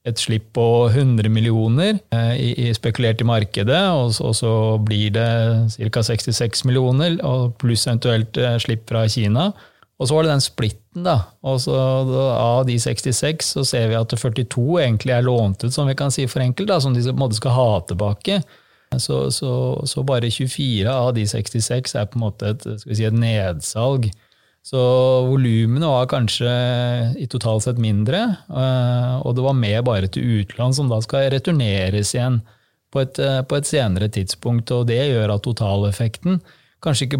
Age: 30-49